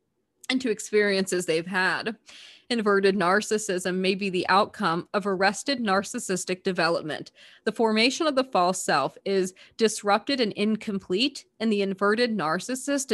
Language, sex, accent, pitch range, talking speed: English, female, American, 190-235 Hz, 135 wpm